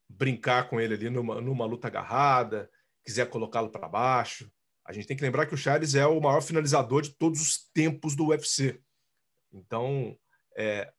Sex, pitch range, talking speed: male, 120-150 Hz, 175 wpm